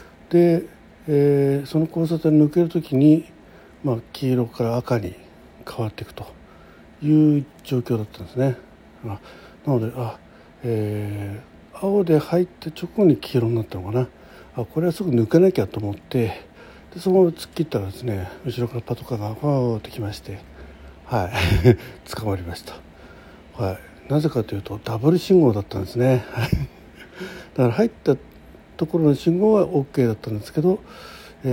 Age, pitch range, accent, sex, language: 60-79, 110-160 Hz, native, male, Japanese